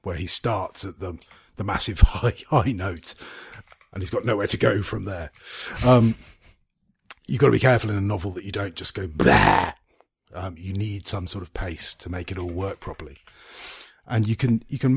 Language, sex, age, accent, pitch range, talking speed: English, male, 40-59, British, 95-125 Hz, 205 wpm